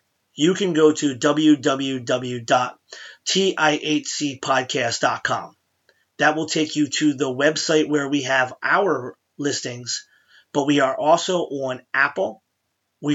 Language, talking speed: English, 110 wpm